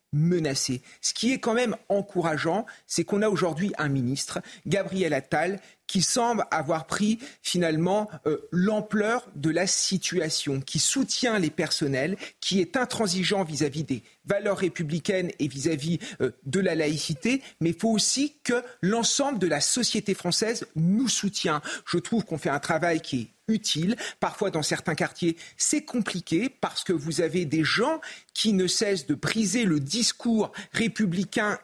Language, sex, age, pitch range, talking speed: French, male, 40-59, 155-210 Hz, 155 wpm